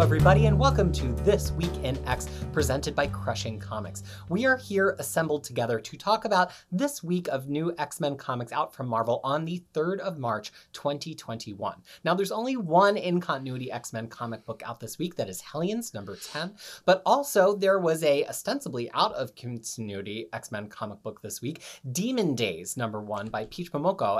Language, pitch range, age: English, 115-175 Hz, 30-49